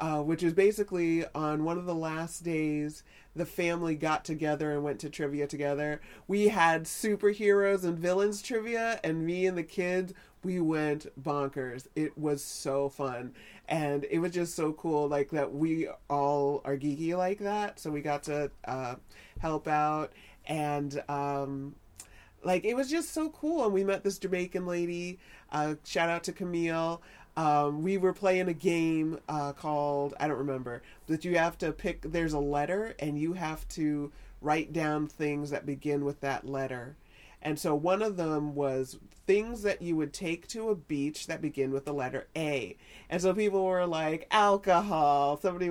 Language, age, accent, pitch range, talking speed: English, 30-49, American, 145-185 Hz, 175 wpm